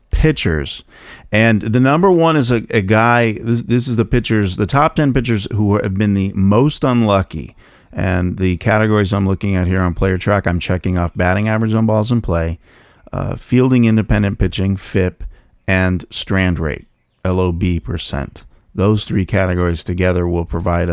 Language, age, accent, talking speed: English, 40-59, American, 170 wpm